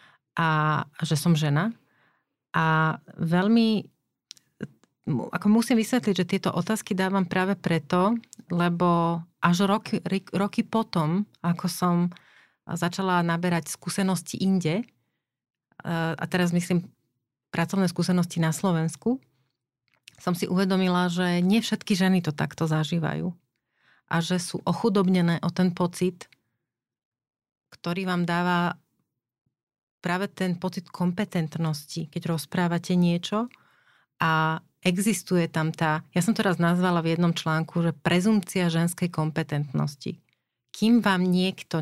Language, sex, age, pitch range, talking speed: Slovak, female, 30-49, 165-190 Hz, 115 wpm